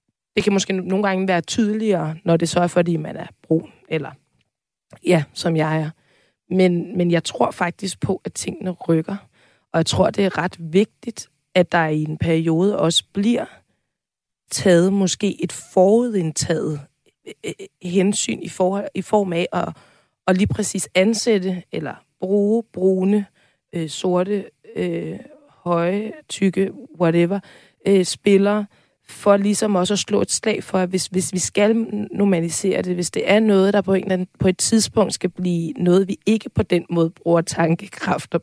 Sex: female